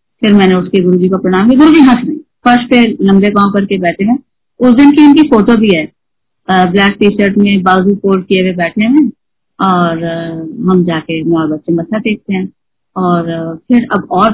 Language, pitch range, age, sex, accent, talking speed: Hindi, 185-245 Hz, 30-49, female, native, 200 wpm